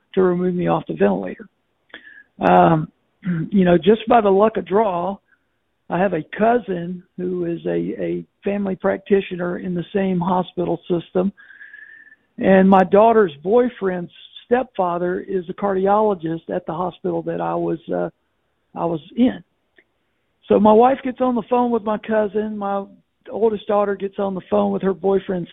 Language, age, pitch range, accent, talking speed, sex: English, 60-79, 175-215 Hz, American, 160 wpm, male